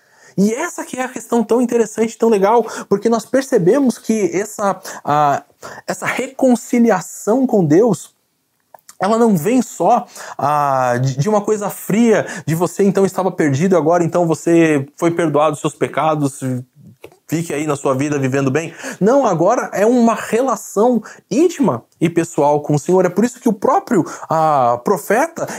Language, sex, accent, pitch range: Portuguese, male, Brazilian, 145-225 Hz